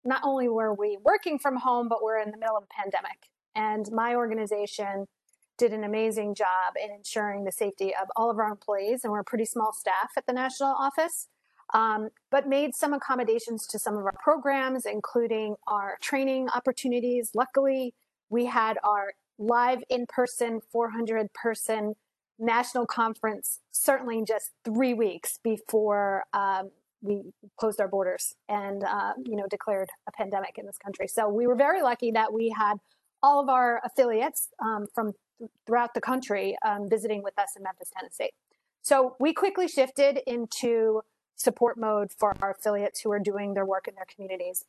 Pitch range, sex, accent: 210-250 Hz, female, American